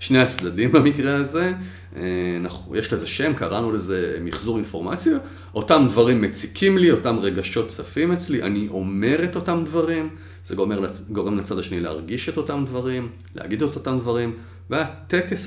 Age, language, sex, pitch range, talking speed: 40-59, Hebrew, male, 90-115 Hz, 145 wpm